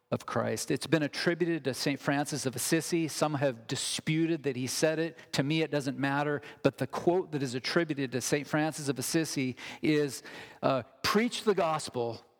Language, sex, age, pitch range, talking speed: English, male, 40-59, 120-155 Hz, 185 wpm